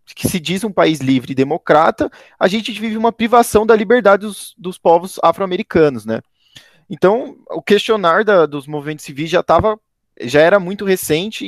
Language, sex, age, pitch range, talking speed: Portuguese, male, 20-39, 135-200 Hz, 165 wpm